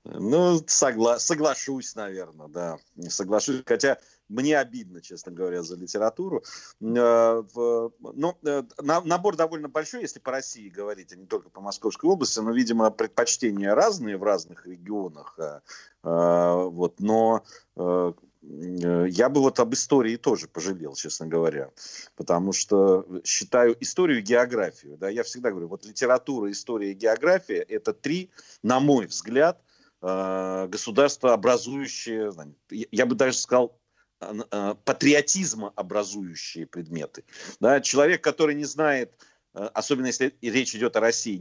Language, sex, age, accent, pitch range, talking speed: Russian, male, 40-59, native, 95-145 Hz, 120 wpm